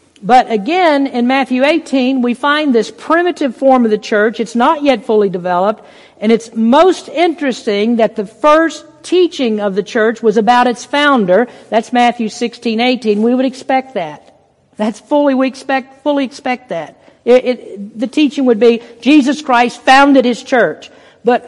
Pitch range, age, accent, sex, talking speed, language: 220-285 Hz, 50-69, American, female, 170 wpm, English